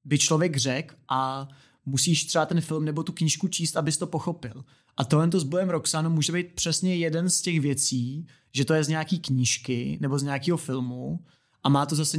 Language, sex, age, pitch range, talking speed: Czech, male, 30-49, 130-155 Hz, 205 wpm